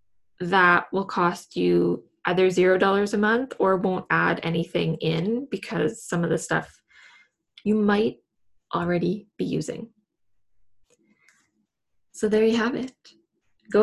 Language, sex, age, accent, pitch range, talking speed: English, female, 10-29, American, 175-215 Hz, 125 wpm